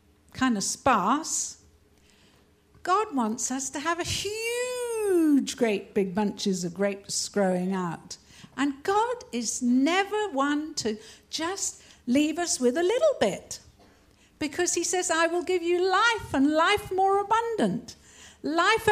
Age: 60-79